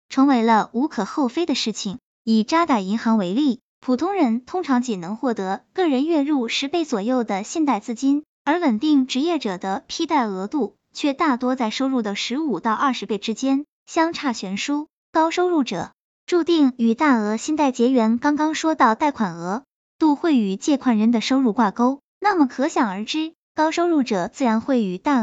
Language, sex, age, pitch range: Chinese, male, 10-29, 215-295 Hz